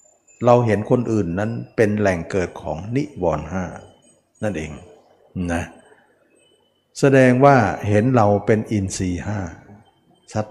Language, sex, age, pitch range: Thai, male, 60-79, 90-120 Hz